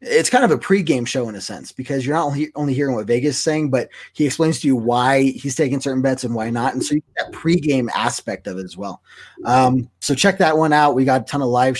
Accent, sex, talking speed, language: American, male, 275 wpm, English